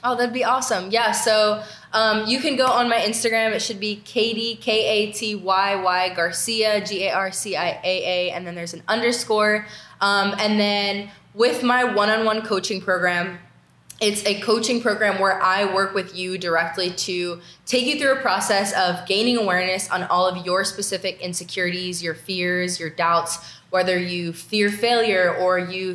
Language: English